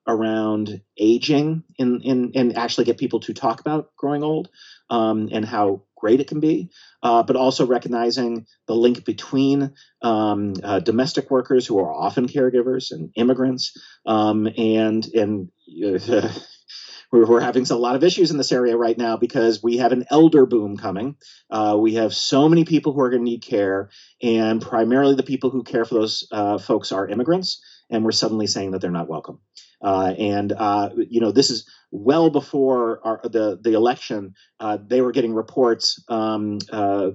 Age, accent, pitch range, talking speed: 30-49, American, 105-130 Hz, 180 wpm